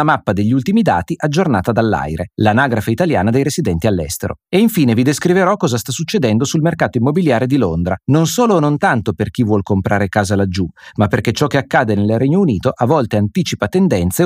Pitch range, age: 105-165 Hz, 30-49